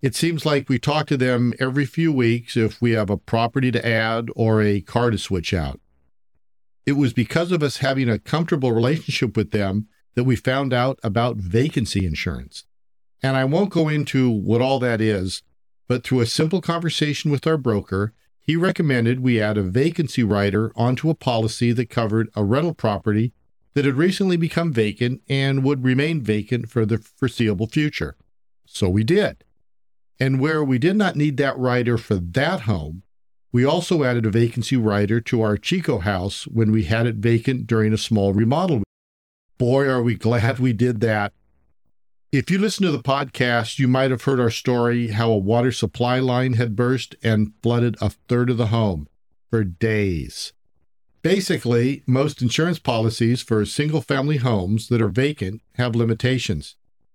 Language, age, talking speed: English, 50-69, 175 wpm